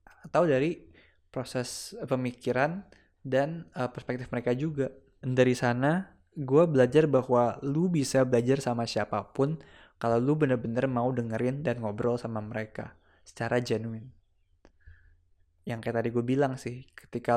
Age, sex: 20-39, male